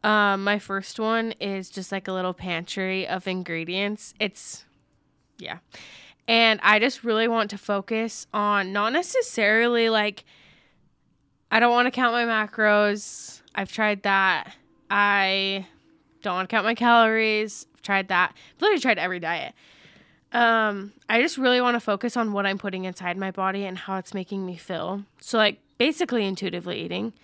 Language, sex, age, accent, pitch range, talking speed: English, female, 10-29, American, 195-235 Hz, 165 wpm